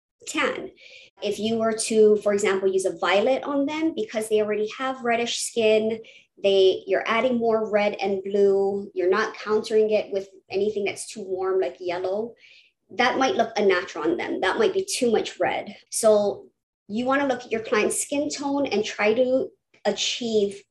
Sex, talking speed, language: male, 180 wpm, English